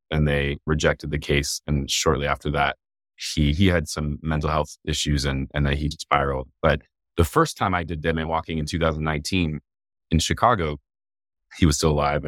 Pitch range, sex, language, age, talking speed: 75-90 Hz, male, English, 30-49, 180 wpm